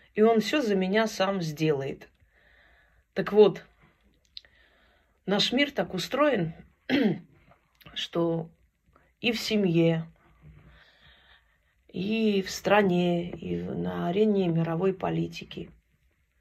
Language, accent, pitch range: Russian, native, 160-200 Hz